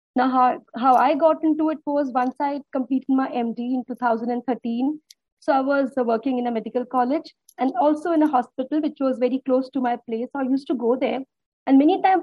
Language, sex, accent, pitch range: English, female, Indian, 255-320 Hz